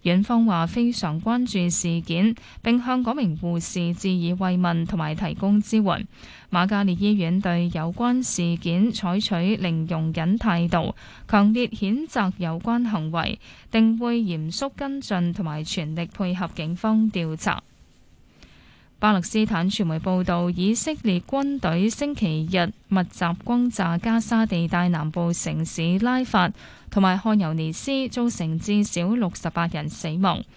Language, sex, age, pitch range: Chinese, female, 10-29, 175-225 Hz